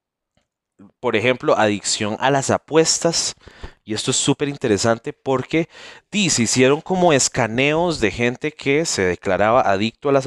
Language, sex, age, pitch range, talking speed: Spanish, male, 30-49, 115-155 Hz, 140 wpm